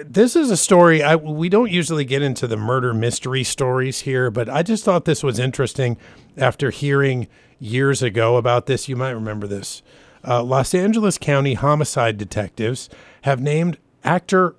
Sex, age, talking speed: male, 50-69, 165 wpm